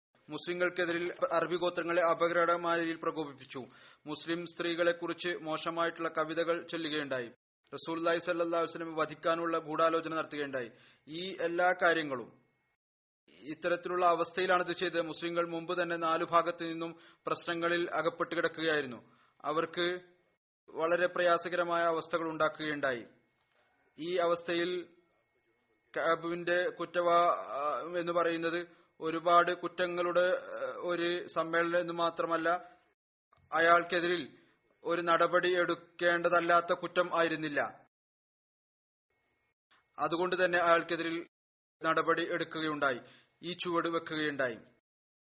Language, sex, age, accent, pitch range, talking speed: Malayalam, male, 30-49, native, 165-175 Hz, 75 wpm